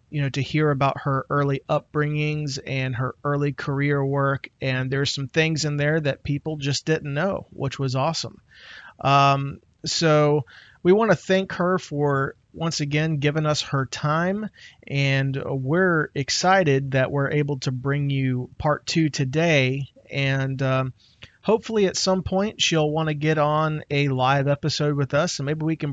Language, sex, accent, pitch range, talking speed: English, male, American, 135-160 Hz, 170 wpm